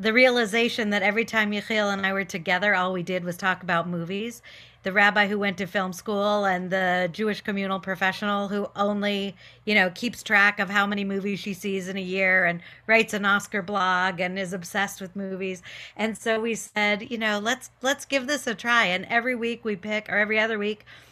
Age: 40-59